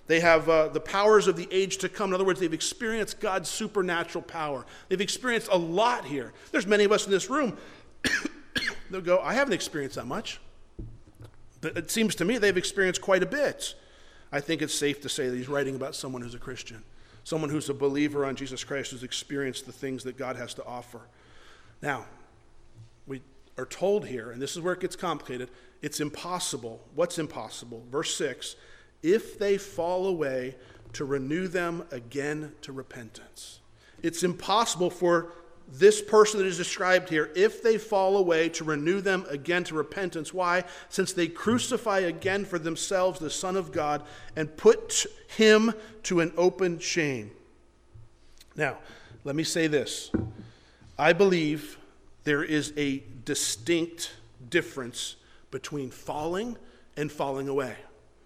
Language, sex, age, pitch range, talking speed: English, male, 50-69, 135-190 Hz, 165 wpm